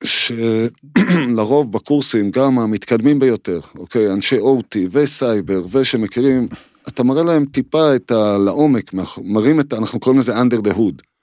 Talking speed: 125 wpm